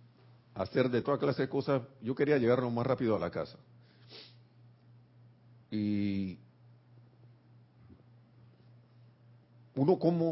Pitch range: 110-125 Hz